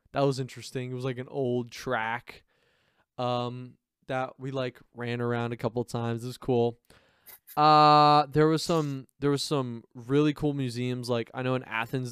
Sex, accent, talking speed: male, American, 185 wpm